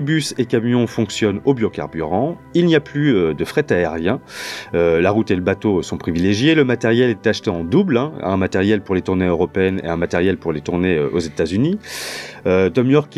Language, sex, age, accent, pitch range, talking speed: French, male, 30-49, French, 90-125 Hz, 210 wpm